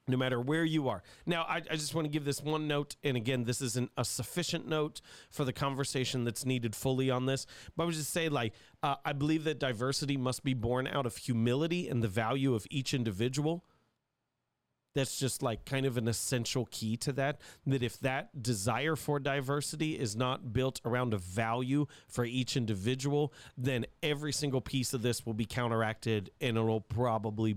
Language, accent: English, American